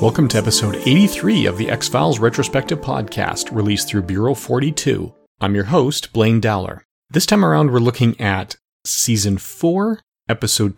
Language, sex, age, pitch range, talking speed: English, male, 30-49, 100-120 Hz, 150 wpm